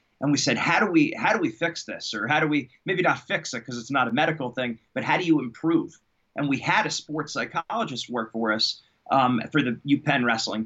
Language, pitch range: English, 125-165 Hz